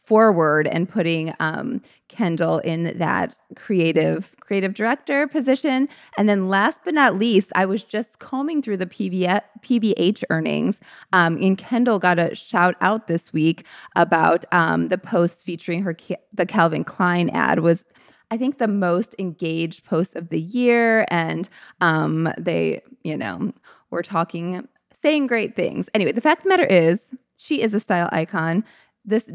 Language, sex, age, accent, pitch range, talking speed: English, female, 20-39, American, 175-230 Hz, 160 wpm